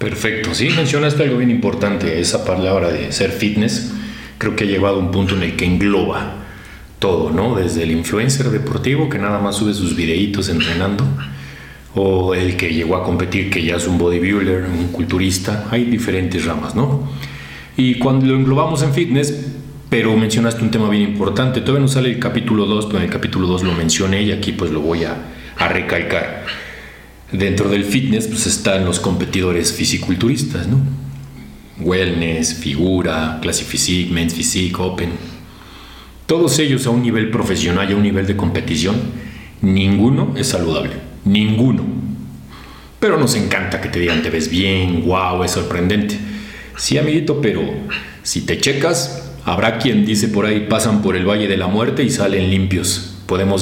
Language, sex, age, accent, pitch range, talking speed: Spanish, male, 40-59, Mexican, 90-115 Hz, 170 wpm